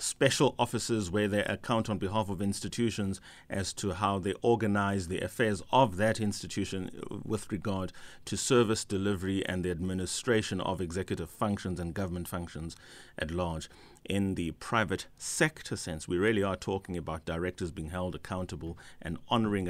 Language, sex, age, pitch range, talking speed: English, male, 30-49, 90-110 Hz, 155 wpm